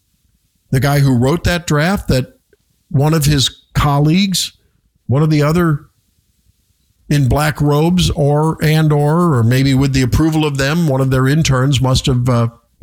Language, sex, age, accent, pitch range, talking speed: English, male, 50-69, American, 120-165 Hz, 165 wpm